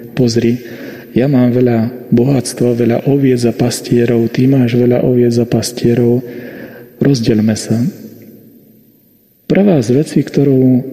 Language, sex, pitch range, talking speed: Slovak, male, 120-140 Hz, 115 wpm